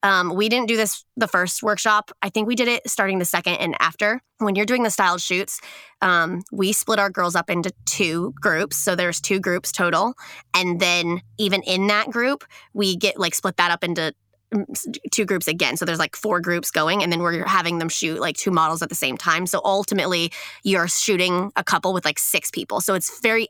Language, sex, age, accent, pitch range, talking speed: English, female, 20-39, American, 170-200 Hz, 220 wpm